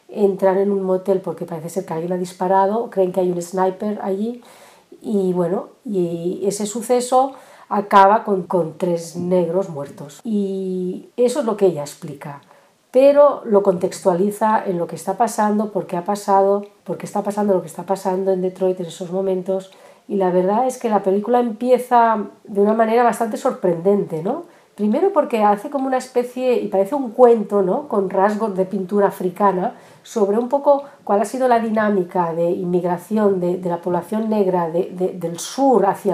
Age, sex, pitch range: 40-59, female, 185-230 Hz